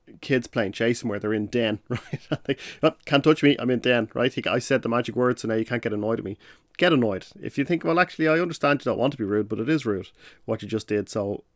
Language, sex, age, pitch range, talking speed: English, male, 30-49, 105-125 Hz, 285 wpm